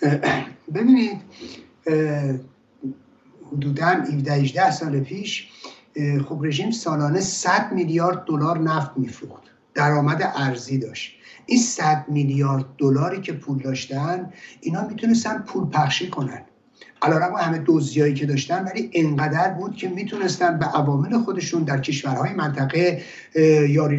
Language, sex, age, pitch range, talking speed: English, male, 60-79, 145-190 Hz, 115 wpm